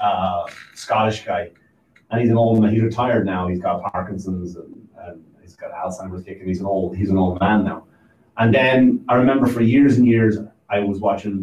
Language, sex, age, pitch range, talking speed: English, male, 30-49, 105-125 Hz, 205 wpm